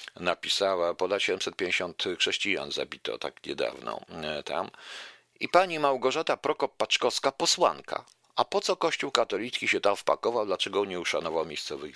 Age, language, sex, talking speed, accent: 50-69, Polish, male, 125 wpm, native